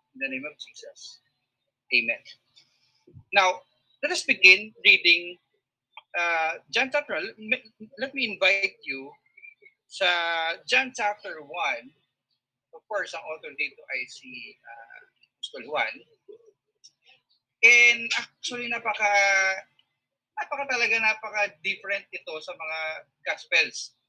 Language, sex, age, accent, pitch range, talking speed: English, male, 30-49, Filipino, 175-250 Hz, 110 wpm